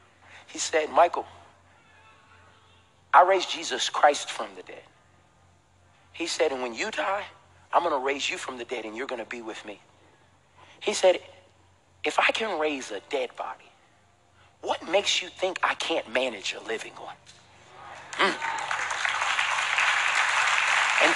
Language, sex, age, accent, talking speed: English, male, 40-59, American, 145 wpm